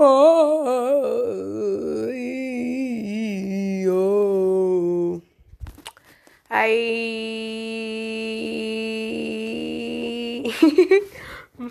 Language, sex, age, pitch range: English, female, 20-39, 170-220 Hz